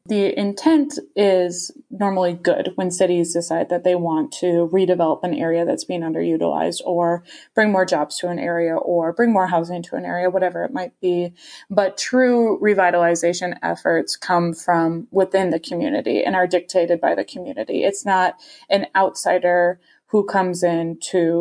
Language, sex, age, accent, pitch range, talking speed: English, female, 20-39, American, 175-200 Hz, 165 wpm